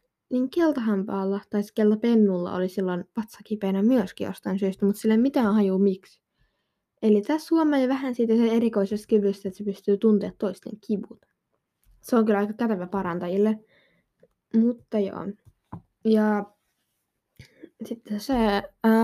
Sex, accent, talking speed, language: female, native, 140 wpm, Finnish